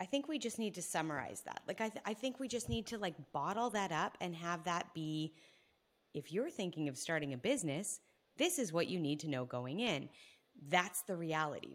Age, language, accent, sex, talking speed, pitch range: 30-49, English, American, female, 220 wpm, 145-180 Hz